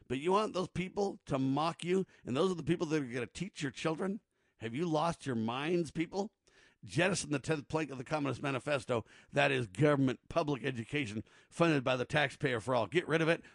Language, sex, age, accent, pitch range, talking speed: English, male, 50-69, American, 130-165 Hz, 215 wpm